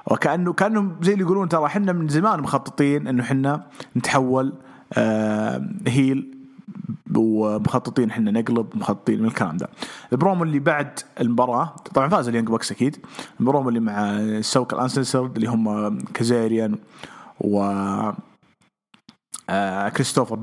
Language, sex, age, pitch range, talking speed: English, male, 30-49, 115-160 Hz, 120 wpm